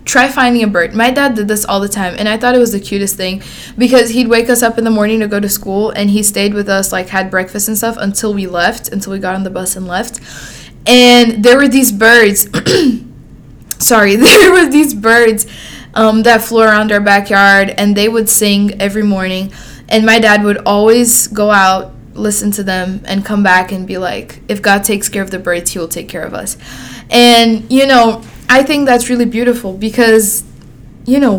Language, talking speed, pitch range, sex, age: English, 220 wpm, 195-245 Hz, female, 20-39